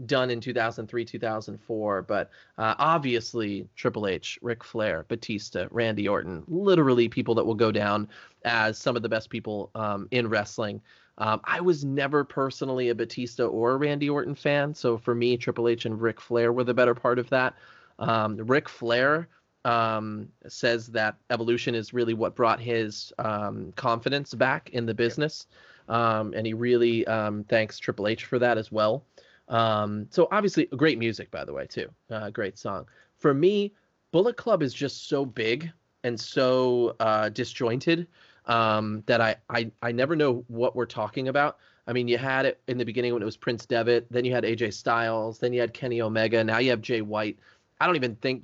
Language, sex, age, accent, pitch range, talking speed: English, male, 20-39, American, 110-125 Hz, 185 wpm